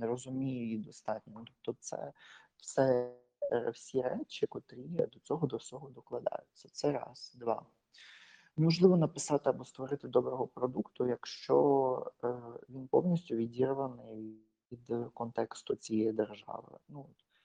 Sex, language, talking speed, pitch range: male, Ukrainian, 115 wpm, 115-140 Hz